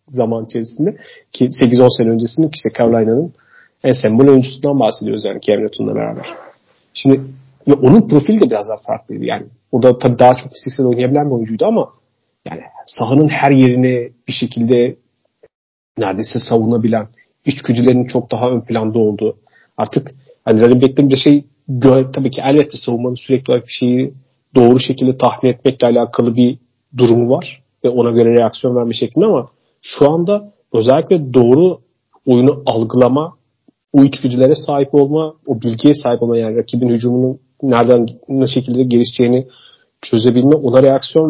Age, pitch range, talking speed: 40-59, 120-135 Hz, 155 wpm